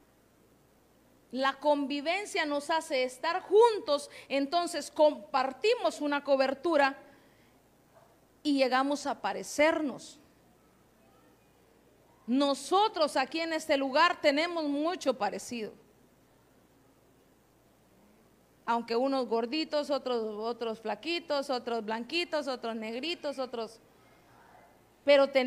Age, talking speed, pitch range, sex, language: 40-59, 80 wpm, 265-330 Hz, female, Spanish